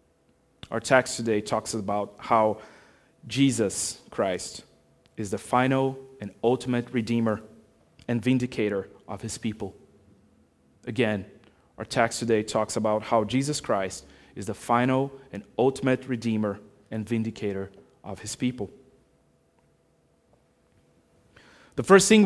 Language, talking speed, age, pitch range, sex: English, 115 wpm, 30-49, 110-150 Hz, male